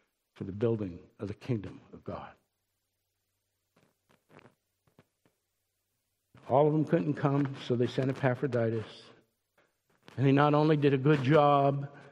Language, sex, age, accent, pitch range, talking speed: English, male, 60-79, American, 125-195 Hz, 125 wpm